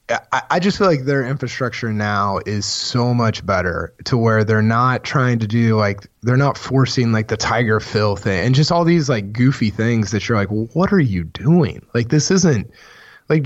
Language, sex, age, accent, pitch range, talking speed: English, male, 20-39, American, 105-145 Hz, 210 wpm